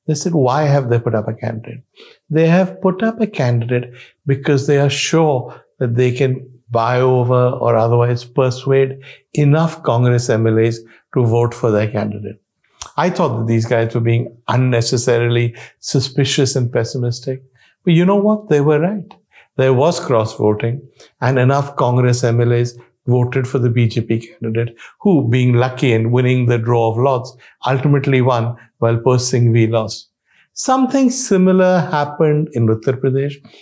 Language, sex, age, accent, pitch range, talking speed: English, male, 60-79, Indian, 120-145 Hz, 150 wpm